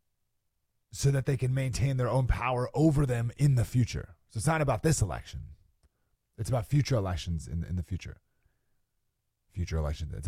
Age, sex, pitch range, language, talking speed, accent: 30-49, male, 95-135 Hz, English, 175 wpm, American